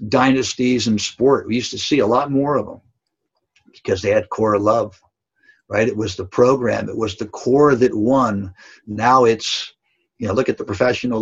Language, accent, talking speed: English, American, 195 wpm